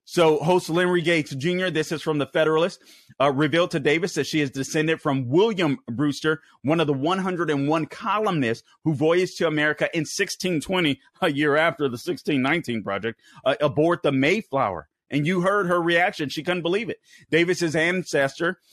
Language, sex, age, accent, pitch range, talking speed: English, male, 30-49, American, 135-180 Hz, 170 wpm